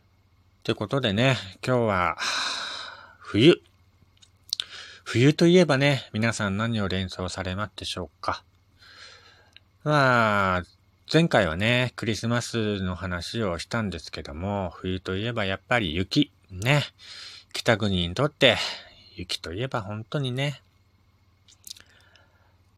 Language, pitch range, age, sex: Japanese, 95-115 Hz, 40-59, male